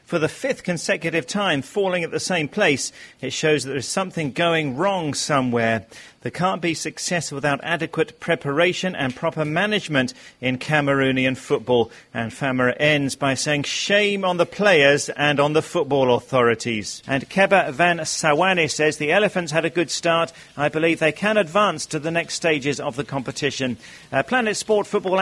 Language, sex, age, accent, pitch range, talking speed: English, male, 40-59, British, 135-175 Hz, 170 wpm